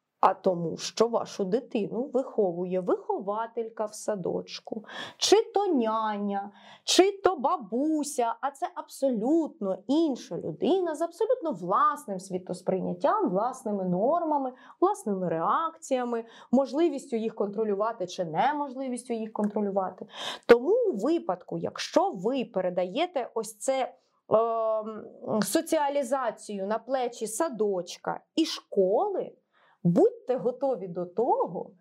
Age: 20-39